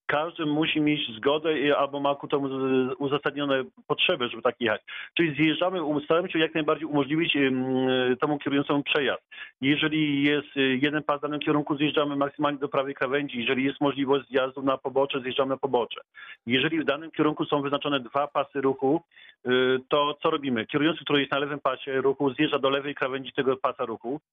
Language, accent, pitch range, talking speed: Polish, native, 135-160 Hz, 175 wpm